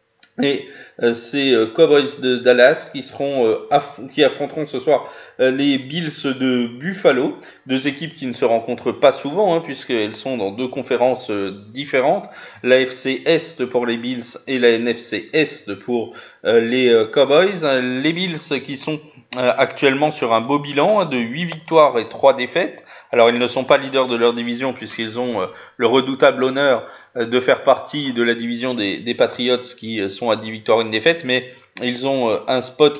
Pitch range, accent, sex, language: 120-140 Hz, French, male, French